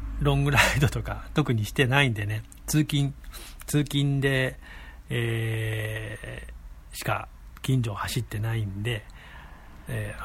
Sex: male